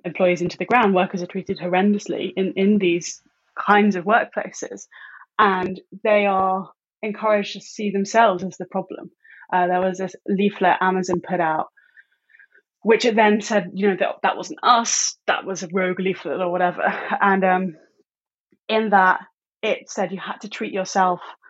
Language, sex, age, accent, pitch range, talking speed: English, female, 10-29, British, 180-205 Hz, 170 wpm